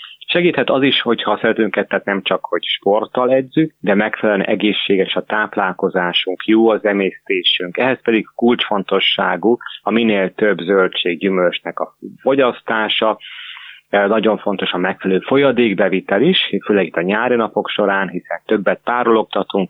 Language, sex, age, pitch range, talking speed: Hungarian, male, 30-49, 95-115 Hz, 135 wpm